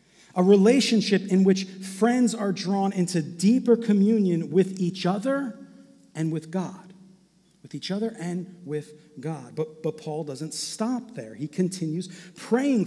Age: 40-59